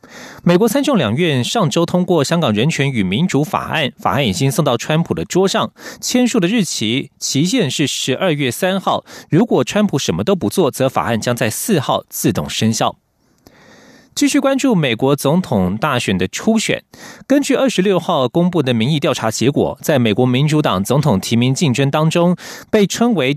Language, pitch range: German, 130-180 Hz